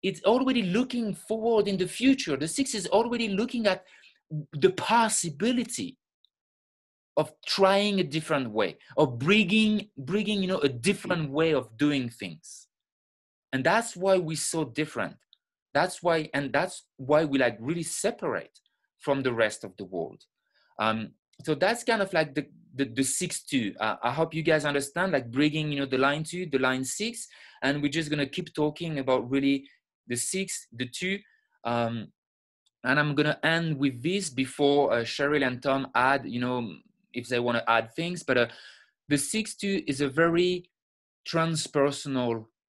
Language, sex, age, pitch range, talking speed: English, male, 30-49, 135-190 Hz, 175 wpm